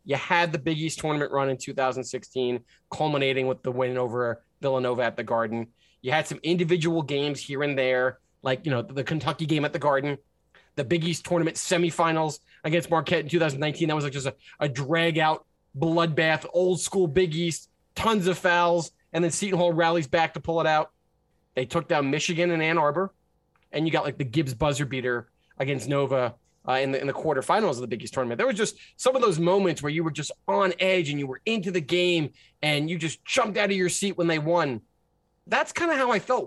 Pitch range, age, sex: 140-180 Hz, 20-39, male